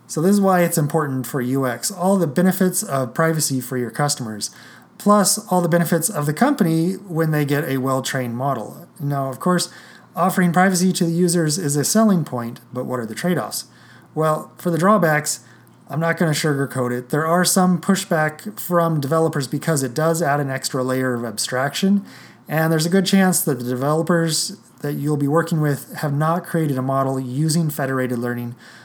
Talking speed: 190 wpm